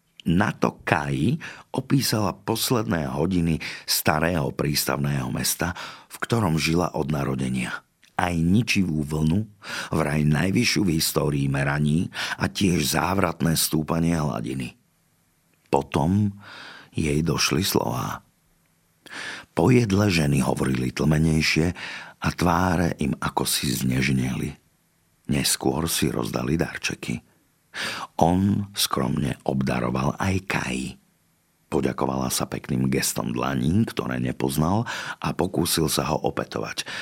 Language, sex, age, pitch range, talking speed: Slovak, male, 50-69, 65-90 Hz, 100 wpm